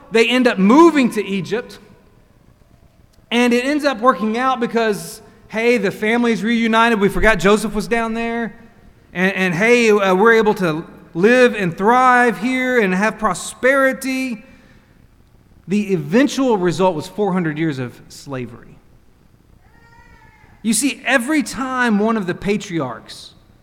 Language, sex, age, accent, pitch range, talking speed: English, male, 30-49, American, 170-230 Hz, 135 wpm